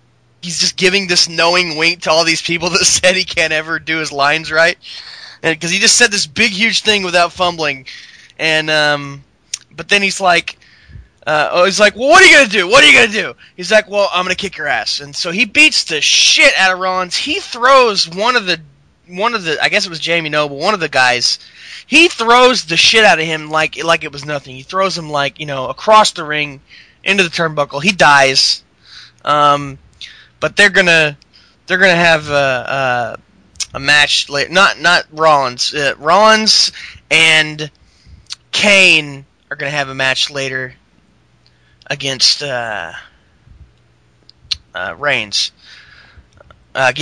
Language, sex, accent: English, male, American